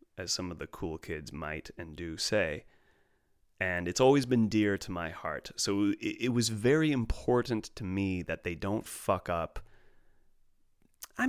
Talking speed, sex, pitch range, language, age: 165 wpm, male, 95-125 Hz, English, 30-49